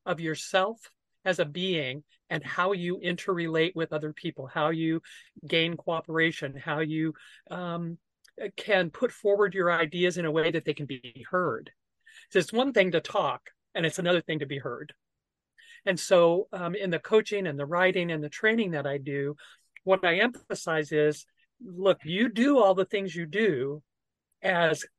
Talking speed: 175 wpm